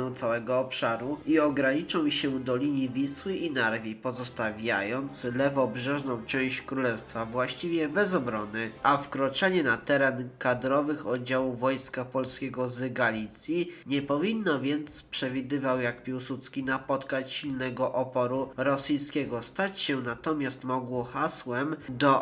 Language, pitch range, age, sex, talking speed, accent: Polish, 125-140 Hz, 20-39, male, 115 wpm, native